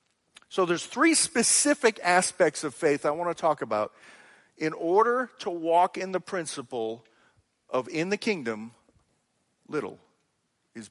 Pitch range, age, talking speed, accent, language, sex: 125-185 Hz, 50-69, 140 wpm, American, English, male